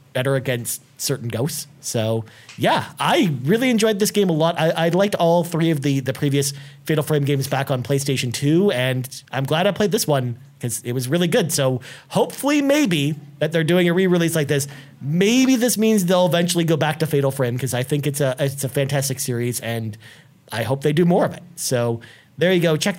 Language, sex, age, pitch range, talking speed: English, male, 30-49, 135-165 Hz, 215 wpm